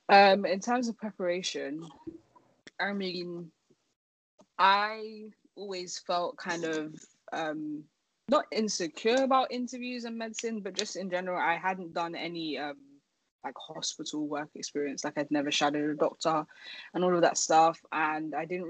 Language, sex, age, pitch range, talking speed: English, female, 10-29, 155-200 Hz, 150 wpm